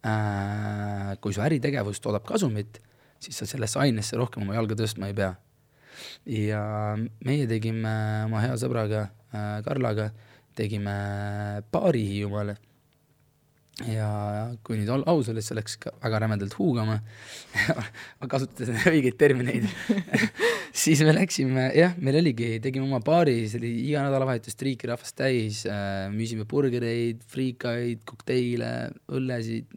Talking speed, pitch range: 115 wpm, 105-125 Hz